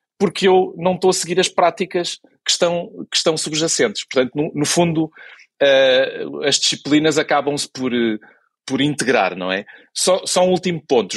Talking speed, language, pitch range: 155 wpm, Portuguese, 130-175 Hz